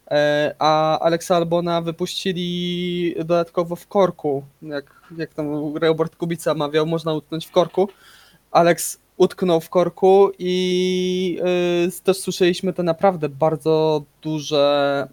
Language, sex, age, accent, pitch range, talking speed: Polish, male, 20-39, native, 140-165 Hz, 115 wpm